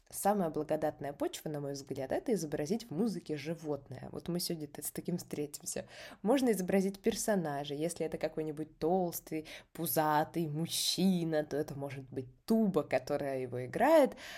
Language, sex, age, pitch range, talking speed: Russian, female, 20-39, 150-200 Hz, 140 wpm